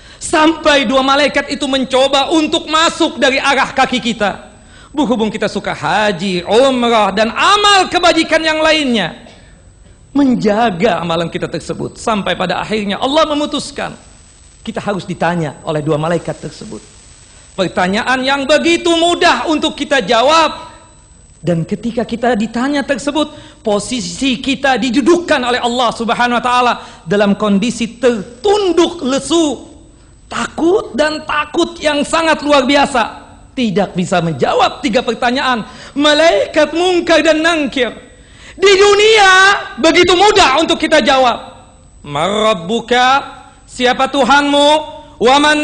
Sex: male